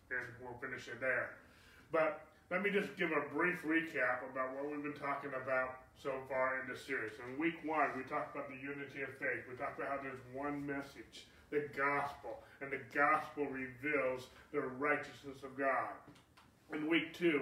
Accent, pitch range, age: American, 130-150 Hz, 30-49